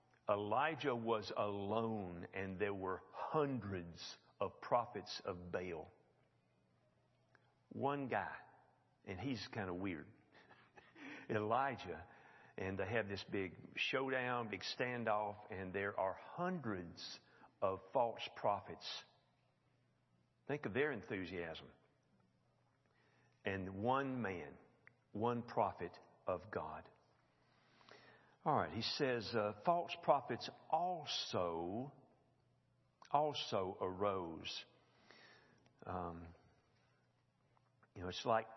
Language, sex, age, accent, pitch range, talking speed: English, male, 50-69, American, 95-120 Hz, 95 wpm